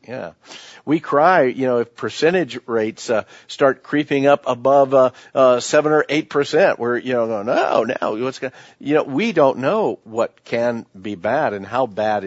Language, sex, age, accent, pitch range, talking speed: English, male, 50-69, American, 105-130 Hz, 180 wpm